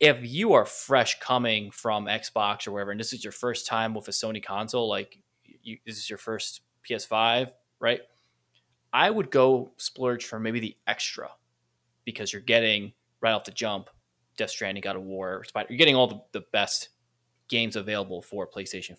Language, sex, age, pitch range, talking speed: English, male, 20-39, 100-120 Hz, 185 wpm